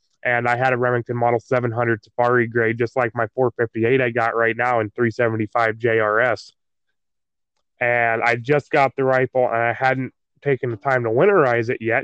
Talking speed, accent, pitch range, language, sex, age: 180 wpm, American, 115-135 Hz, English, male, 20-39